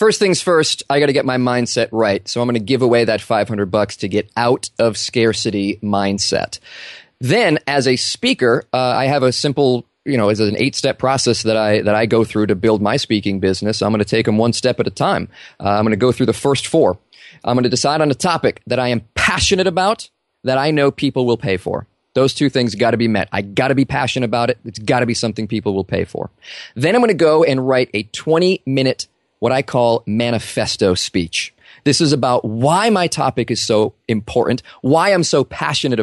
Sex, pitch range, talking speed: male, 110-140 Hz, 235 wpm